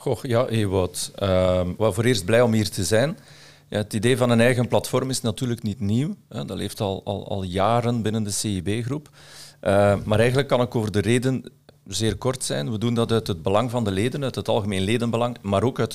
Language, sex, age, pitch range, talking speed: Dutch, male, 50-69, 100-125 Hz, 230 wpm